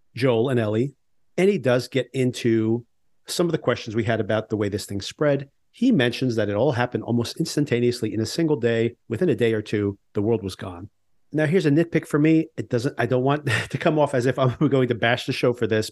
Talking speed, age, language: 245 wpm, 40-59, English